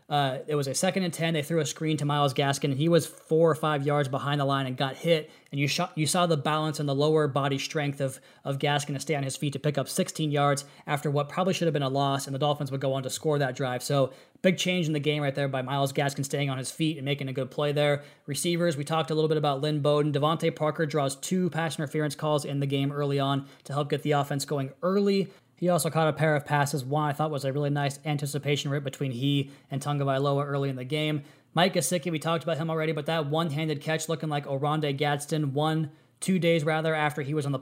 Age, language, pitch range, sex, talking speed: 20-39, English, 140-155 Hz, male, 270 wpm